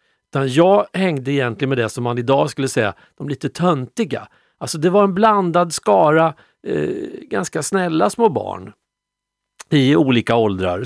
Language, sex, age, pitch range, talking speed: Swedish, male, 50-69, 120-165 Hz, 150 wpm